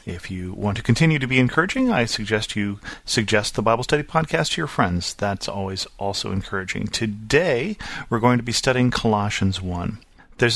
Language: English